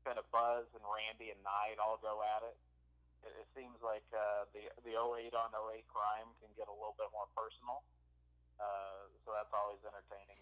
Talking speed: 195 wpm